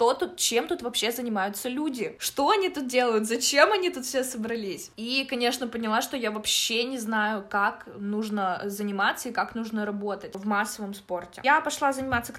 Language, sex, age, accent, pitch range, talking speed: Russian, female, 20-39, native, 210-260 Hz, 180 wpm